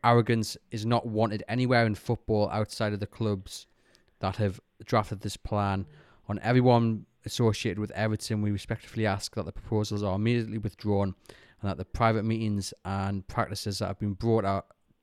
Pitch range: 95-115 Hz